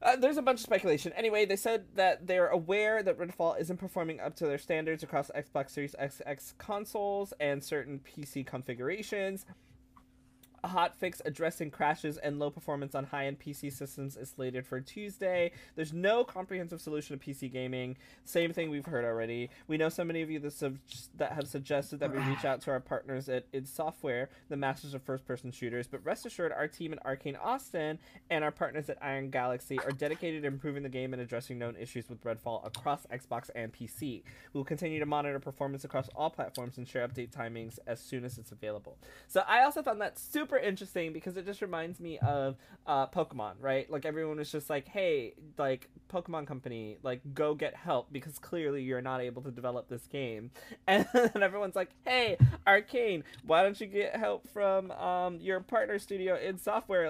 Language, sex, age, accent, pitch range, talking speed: English, male, 20-39, American, 130-180 Hz, 190 wpm